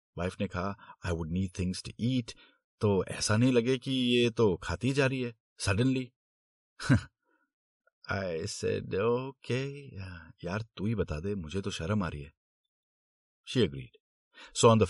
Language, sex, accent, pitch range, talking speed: Hindi, male, native, 80-120 Hz, 125 wpm